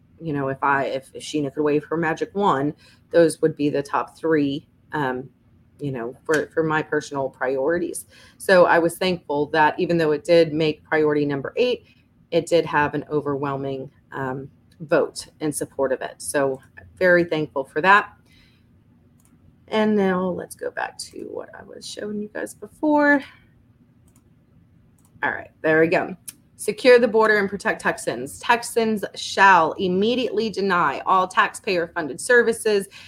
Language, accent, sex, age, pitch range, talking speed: English, American, female, 30-49, 145-185 Hz, 155 wpm